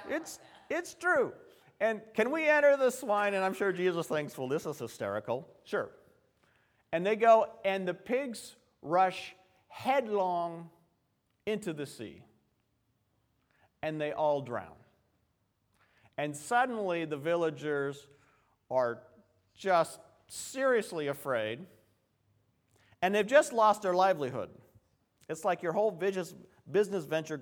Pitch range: 130-185 Hz